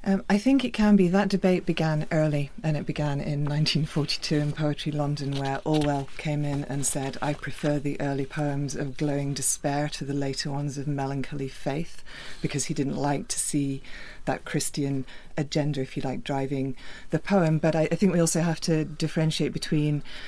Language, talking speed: English, 190 wpm